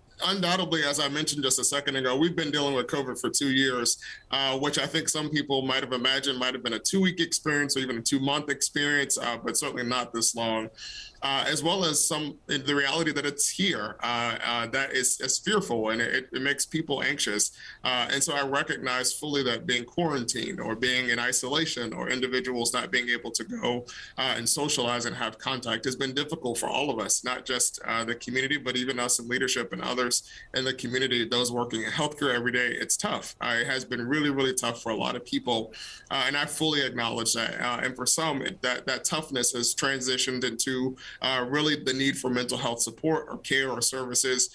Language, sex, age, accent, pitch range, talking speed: English, male, 30-49, American, 120-145 Hz, 220 wpm